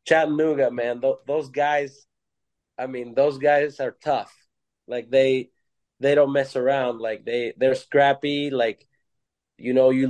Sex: male